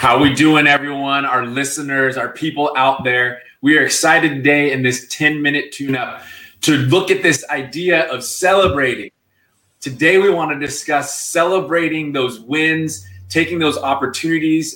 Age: 20-39